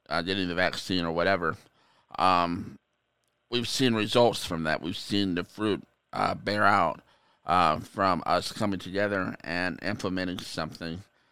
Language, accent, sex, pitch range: English, American, male, 95-115 Hz